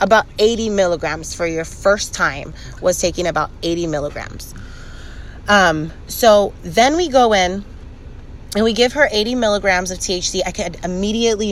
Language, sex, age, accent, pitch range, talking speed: English, female, 30-49, American, 165-210 Hz, 150 wpm